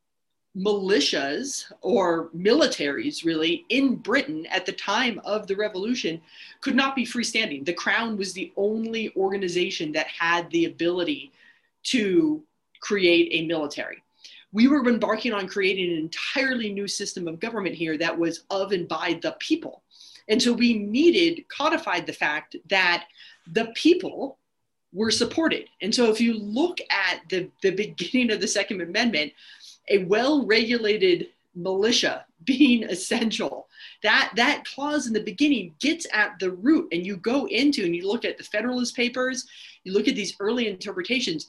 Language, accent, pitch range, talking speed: English, American, 190-270 Hz, 155 wpm